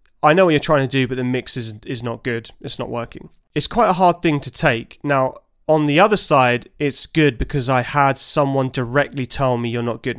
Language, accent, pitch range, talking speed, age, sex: English, British, 125-150 Hz, 240 wpm, 30-49, male